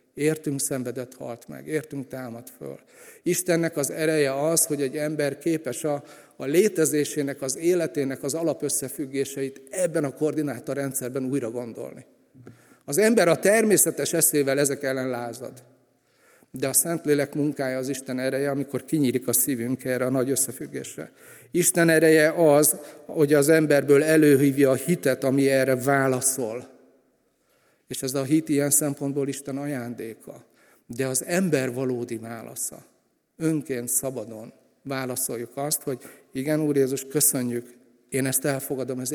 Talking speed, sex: 135 wpm, male